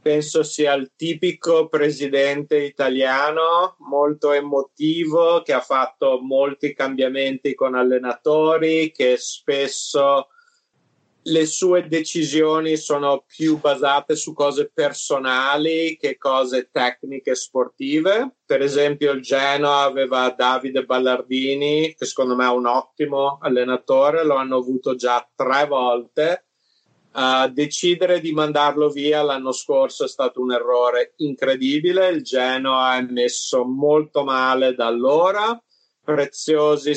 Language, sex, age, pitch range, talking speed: Persian, male, 30-49, 130-155 Hz, 115 wpm